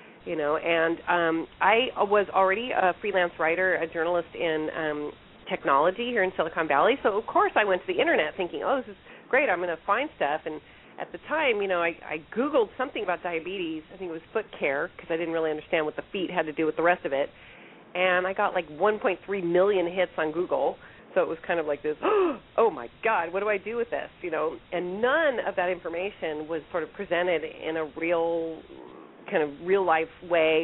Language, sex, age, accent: English, female, 40-59, American